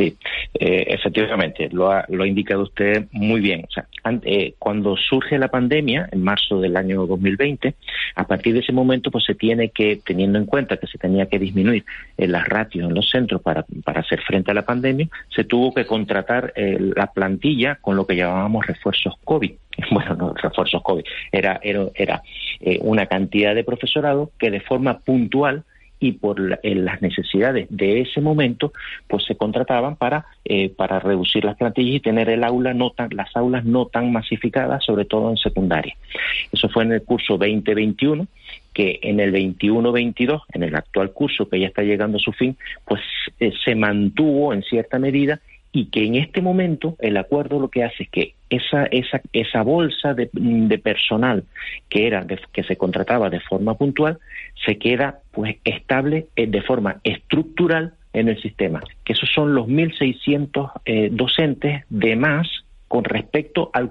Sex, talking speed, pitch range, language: male, 175 wpm, 100-140 Hz, Spanish